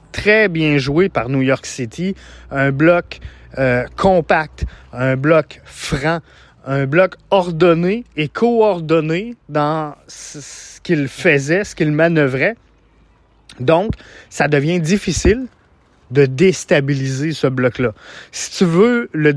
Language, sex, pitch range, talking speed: French, male, 145-195 Hz, 120 wpm